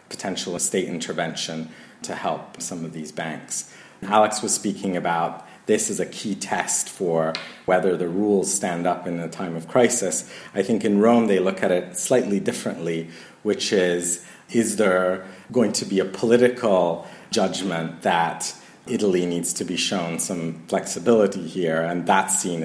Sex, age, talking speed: male, 40-59, 160 wpm